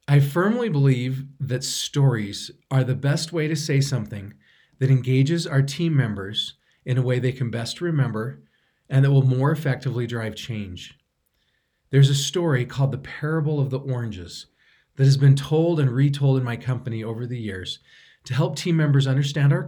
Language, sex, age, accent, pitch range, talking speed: English, male, 40-59, American, 120-150 Hz, 175 wpm